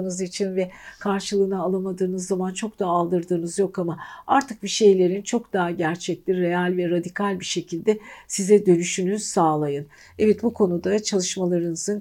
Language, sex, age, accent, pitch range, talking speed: Turkish, female, 60-79, native, 170-205 Hz, 140 wpm